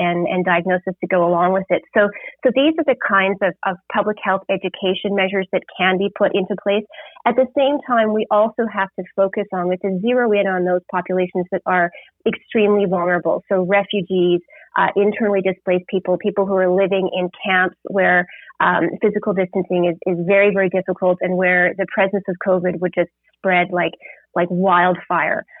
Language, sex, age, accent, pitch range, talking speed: English, female, 30-49, American, 180-200 Hz, 185 wpm